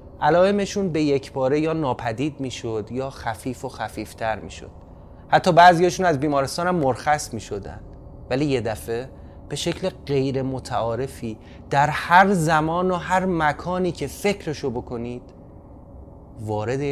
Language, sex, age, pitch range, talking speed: Persian, male, 30-49, 110-155 Hz, 135 wpm